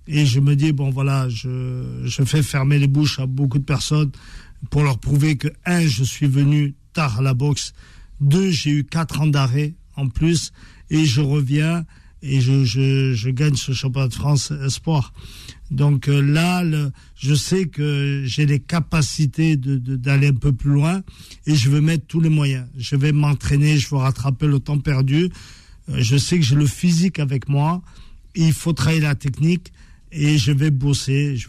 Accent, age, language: French, 50-69, French